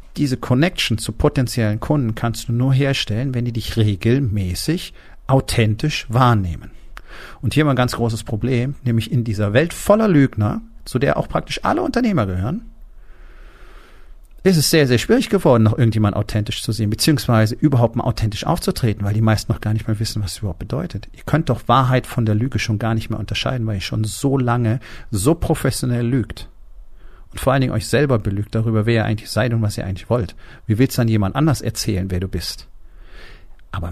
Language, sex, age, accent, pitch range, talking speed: German, male, 40-59, German, 105-130 Hz, 200 wpm